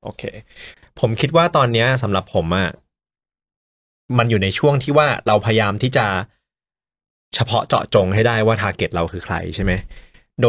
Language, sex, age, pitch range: Thai, male, 30-49, 95-125 Hz